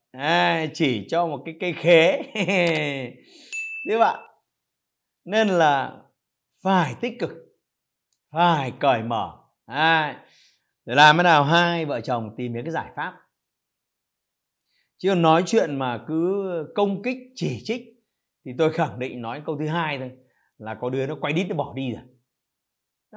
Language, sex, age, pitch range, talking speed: Vietnamese, male, 30-49, 125-180 Hz, 155 wpm